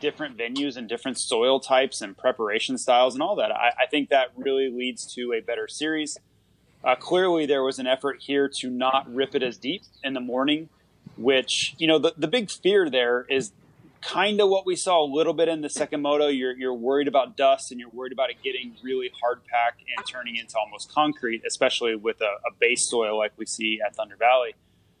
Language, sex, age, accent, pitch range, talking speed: English, male, 30-49, American, 125-160 Hz, 215 wpm